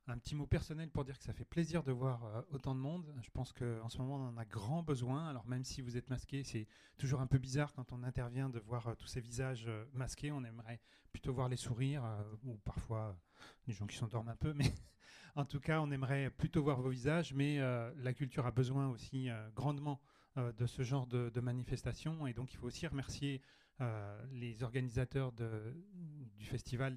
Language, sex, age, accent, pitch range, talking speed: French, male, 30-49, French, 120-145 Hz, 225 wpm